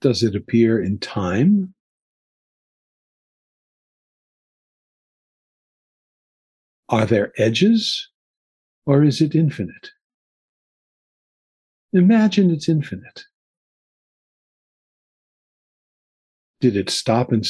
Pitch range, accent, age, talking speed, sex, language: 115-160 Hz, American, 50-69, 65 wpm, male, English